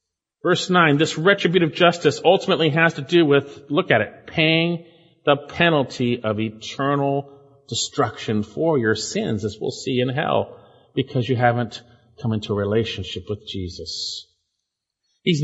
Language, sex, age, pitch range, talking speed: English, male, 40-59, 110-165 Hz, 145 wpm